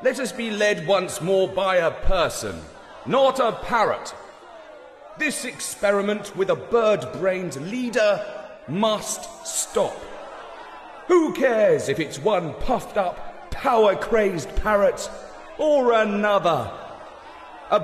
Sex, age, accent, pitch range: male, 30-49, British, 185-255 Hz